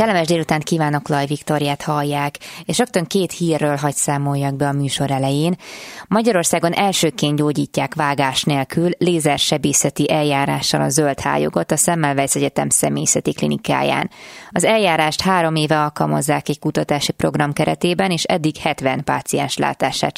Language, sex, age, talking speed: Hungarian, female, 20-39, 130 wpm